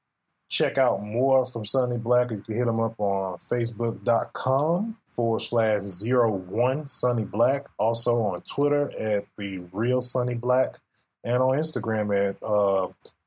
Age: 20-39